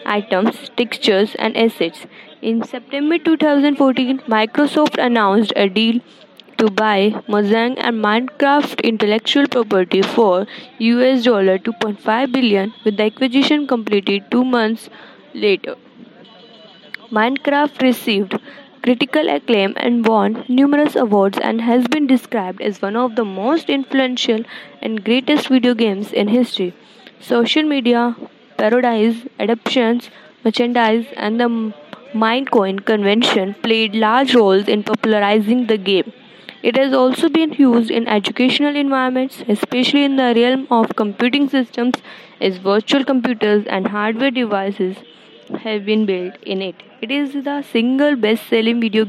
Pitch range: 215-260 Hz